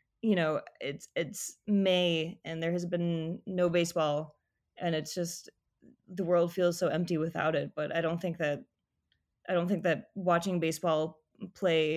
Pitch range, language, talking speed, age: 160-185 Hz, English, 165 wpm, 20-39